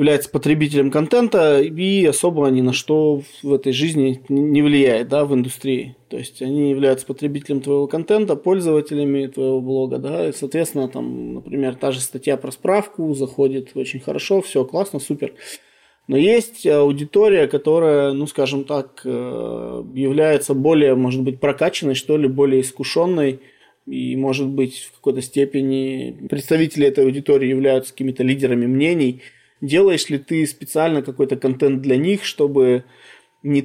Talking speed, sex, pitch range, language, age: 145 wpm, male, 130-150 Hz, Russian, 20-39